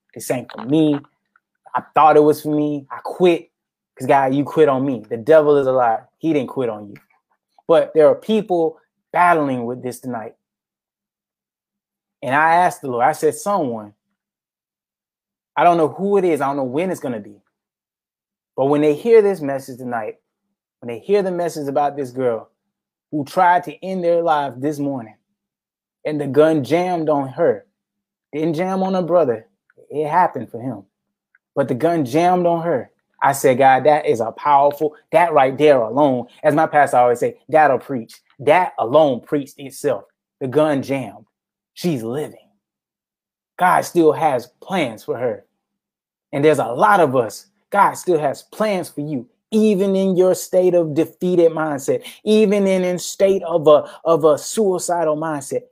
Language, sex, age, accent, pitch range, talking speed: English, male, 20-39, American, 140-180 Hz, 175 wpm